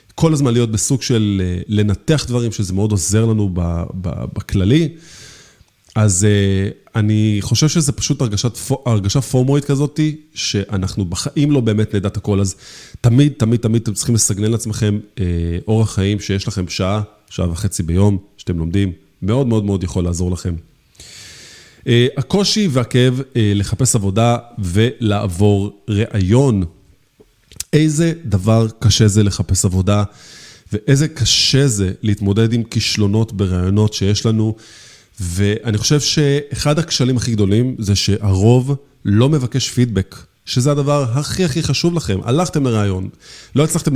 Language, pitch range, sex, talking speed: Hebrew, 100-135 Hz, male, 125 wpm